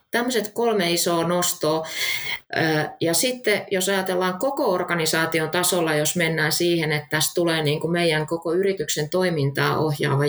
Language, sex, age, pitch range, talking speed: Finnish, female, 20-39, 155-200 Hz, 130 wpm